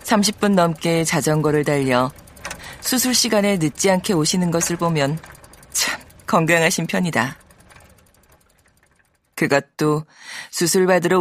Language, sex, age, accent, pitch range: Korean, female, 40-59, native, 150-205 Hz